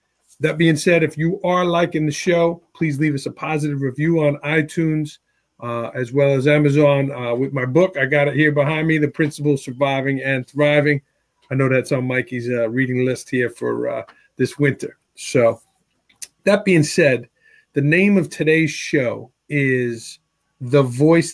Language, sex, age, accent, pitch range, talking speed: English, male, 40-59, American, 130-150 Hz, 175 wpm